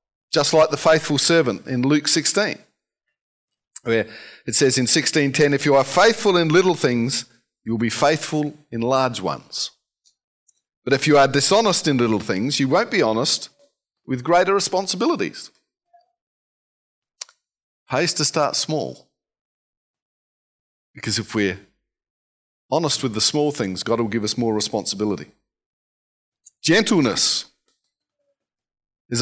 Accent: Australian